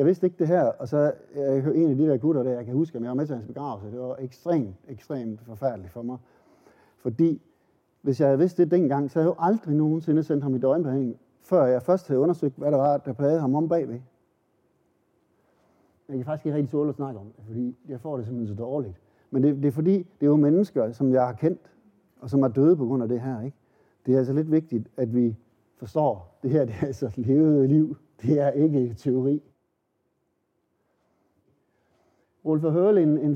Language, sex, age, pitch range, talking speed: Danish, male, 60-79, 130-155 Hz, 225 wpm